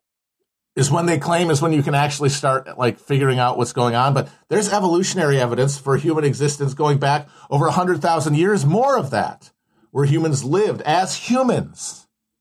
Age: 40-59